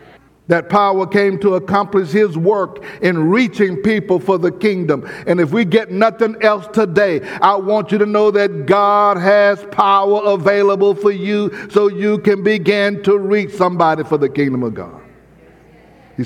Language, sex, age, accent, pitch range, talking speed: English, male, 60-79, American, 165-205 Hz, 165 wpm